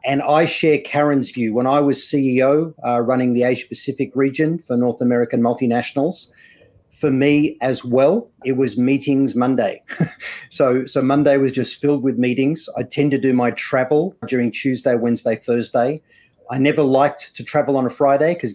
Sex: male